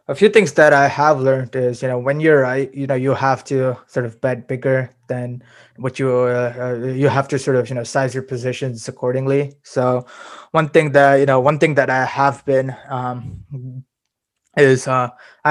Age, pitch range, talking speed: 20-39, 130-140 Hz, 200 wpm